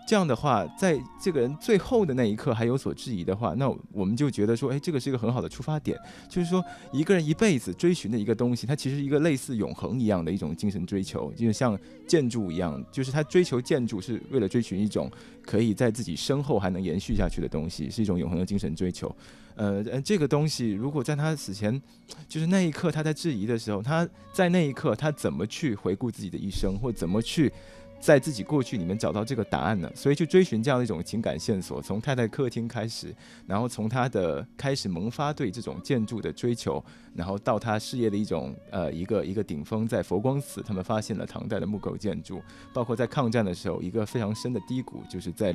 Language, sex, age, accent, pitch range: Chinese, male, 20-39, native, 100-140 Hz